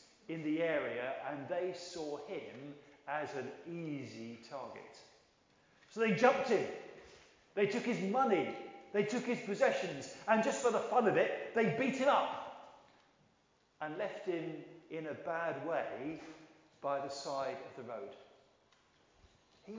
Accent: British